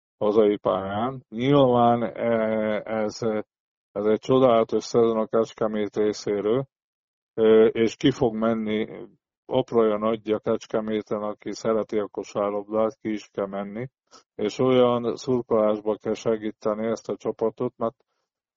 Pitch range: 110-125 Hz